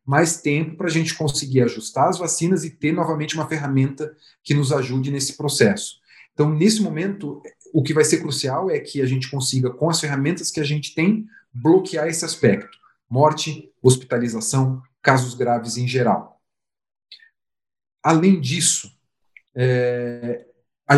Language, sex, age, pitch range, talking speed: Portuguese, male, 40-59, 130-160 Hz, 145 wpm